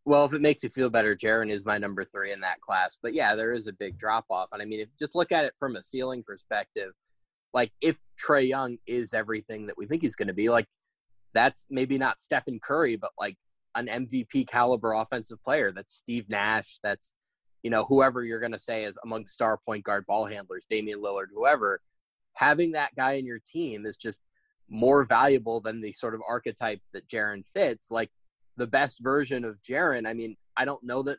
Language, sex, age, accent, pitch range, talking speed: English, male, 20-39, American, 110-135 Hz, 215 wpm